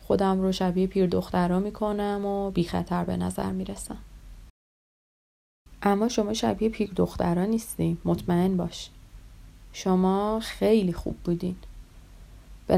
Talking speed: 115 wpm